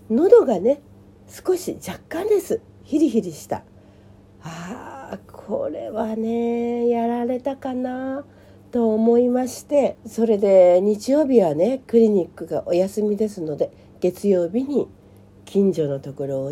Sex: female